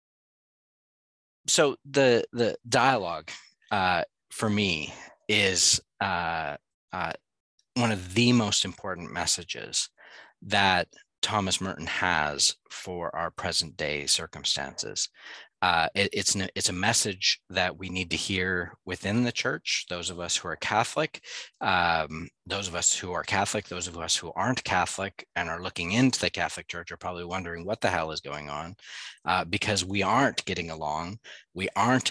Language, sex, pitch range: English, male, 85-105 Hz